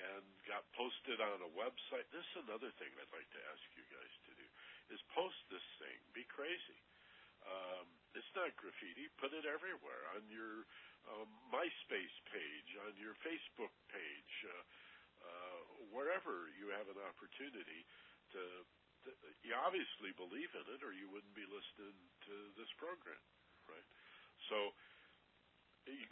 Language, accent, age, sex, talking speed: English, American, 60-79, male, 150 wpm